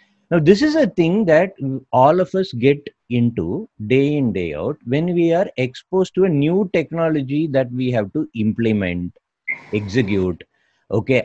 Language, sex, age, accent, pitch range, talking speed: English, male, 50-69, Indian, 125-195 Hz, 160 wpm